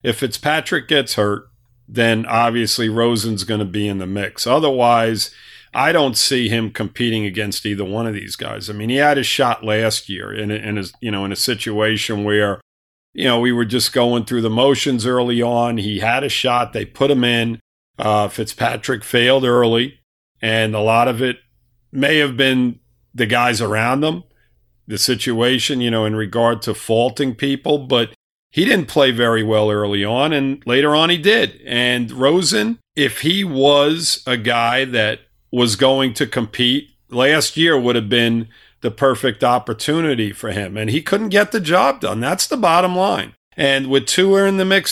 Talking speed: 185 wpm